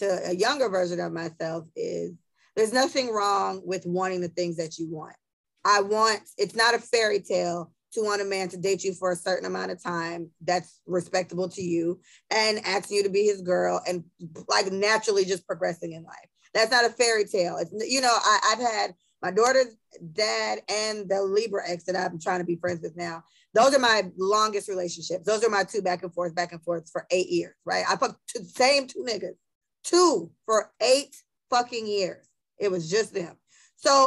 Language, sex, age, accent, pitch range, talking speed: English, female, 20-39, American, 180-225 Hz, 205 wpm